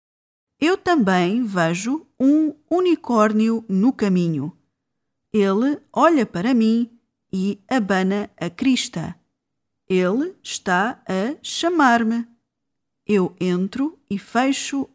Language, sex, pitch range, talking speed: Portuguese, female, 185-255 Hz, 90 wpm